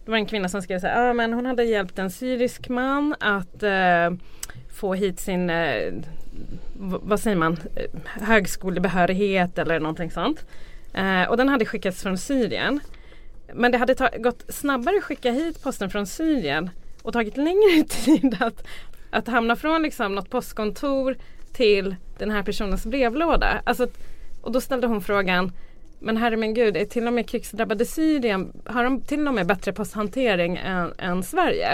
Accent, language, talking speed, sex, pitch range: native, Swedish, 145 wpm, female, 190-260 Hz